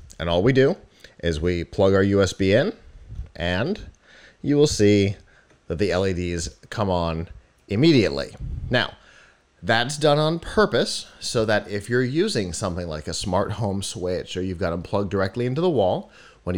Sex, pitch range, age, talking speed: male, 90-110 Hz, 30-49, 165 wpm